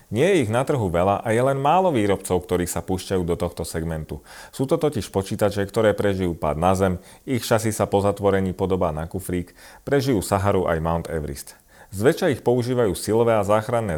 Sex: male